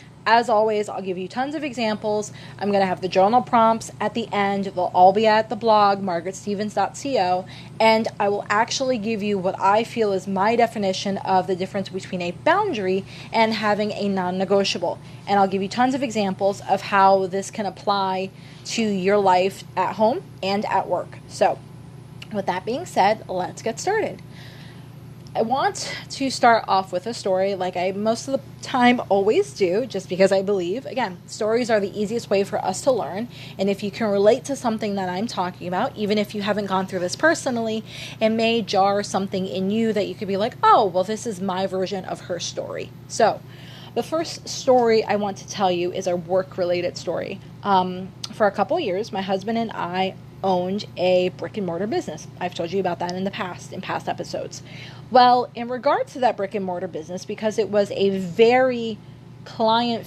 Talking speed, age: 200 wpm, 20-39